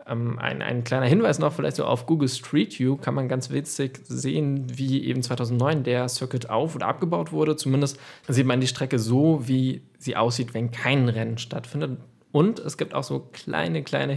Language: German